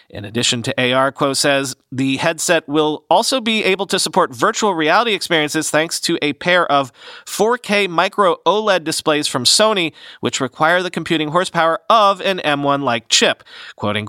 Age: 40-59